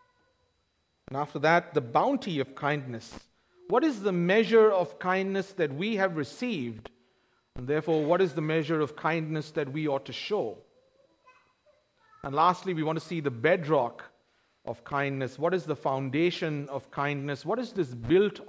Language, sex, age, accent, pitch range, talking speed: English, male, 50-69, Indian, 140-195 Hz, 160 wpm